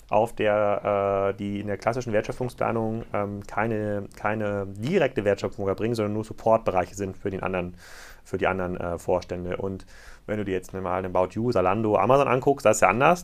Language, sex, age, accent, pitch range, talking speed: German, male, 30-49, German, 100-125 Hz, 175 wpm